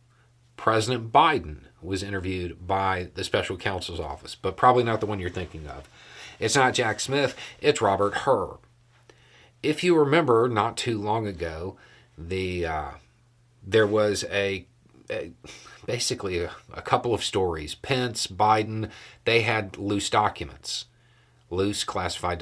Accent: American